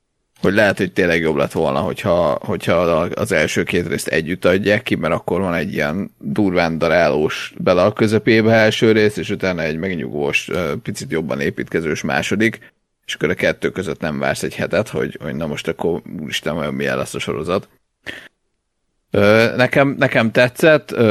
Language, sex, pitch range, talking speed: Hungarian, male, 90-110 Hz, 170 wpm